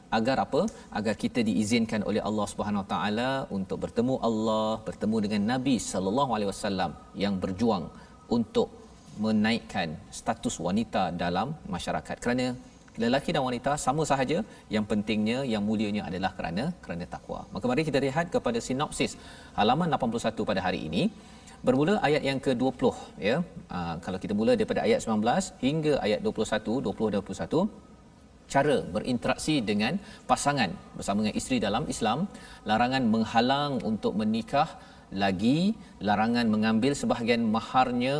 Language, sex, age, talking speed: Malayalam, male, 40-59, 135 wpm